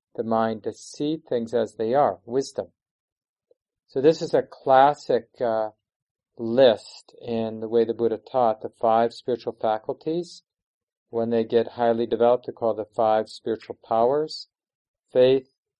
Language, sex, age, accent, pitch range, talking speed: English, male, 40-59, American, 115-135 Hz, 135 wpm